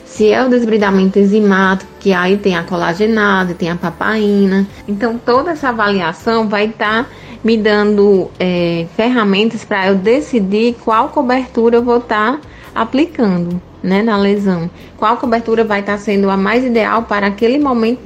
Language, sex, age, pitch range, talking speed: Portuguese, female, 20-39, 200-235 Hz, 165 wpm